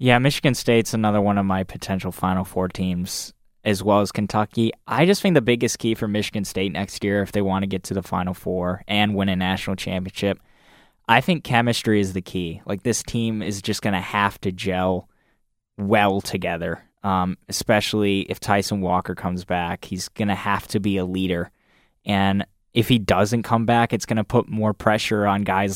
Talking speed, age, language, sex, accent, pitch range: 205 wpm, 10-29, English, male, American, 95-115 Hz